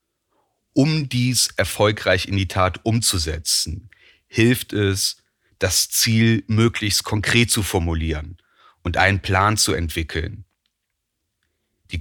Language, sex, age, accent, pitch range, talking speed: German, male, 40-59, German, 90-110 Hz, 105 wpm